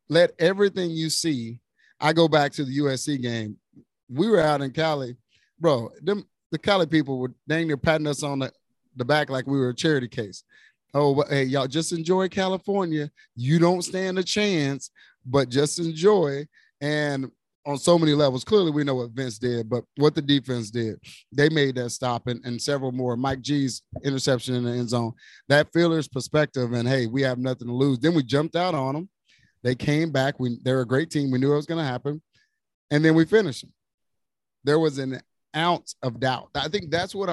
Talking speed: 200 wpm